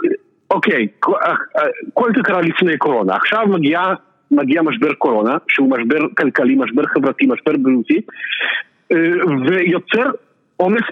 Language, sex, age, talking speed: Hebrew, male, 50-69, 115 wpm